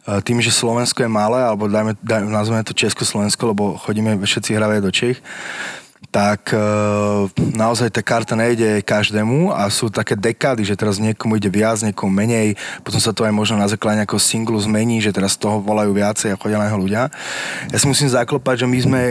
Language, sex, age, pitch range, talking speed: Slovak, male, 20-39, 105-120 Hz, 190 wpm